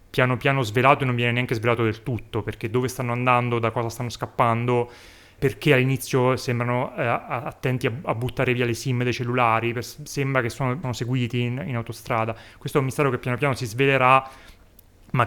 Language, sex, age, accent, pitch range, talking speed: Italian, male, 30-49, native, 115-135 Hz, 195 wpm